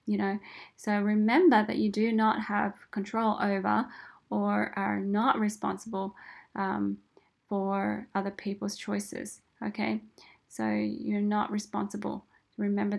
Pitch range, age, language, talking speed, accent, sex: 195-220 Hz, 10-29, English, 120 wpm, Australian, female